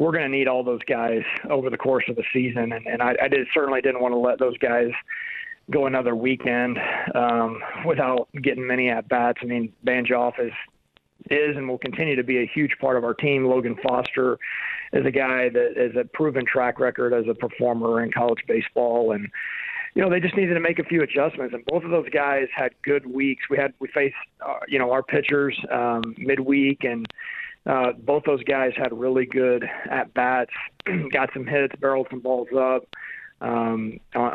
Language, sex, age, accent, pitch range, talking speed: English, male, 40-59, American, 120-145 Hz, 200 wpm